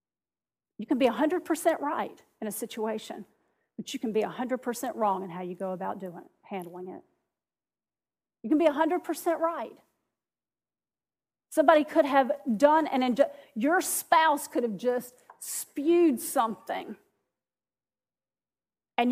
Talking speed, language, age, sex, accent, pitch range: 130 wpm, English, 40-59, female, American, 235-315 Hz